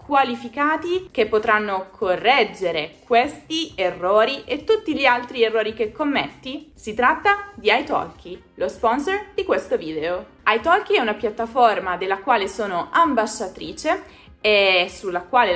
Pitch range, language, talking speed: 185-275 Hz, Italian, 125 wpm